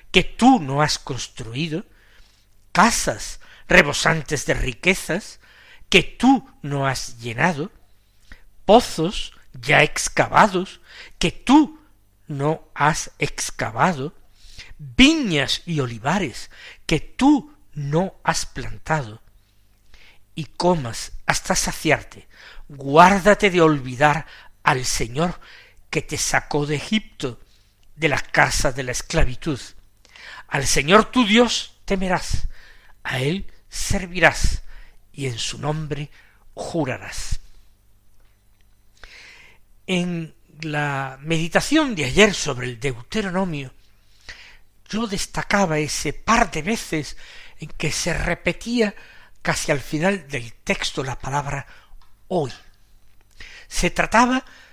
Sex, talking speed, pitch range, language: male, 100 wpm, 115-185 Hz, Spanish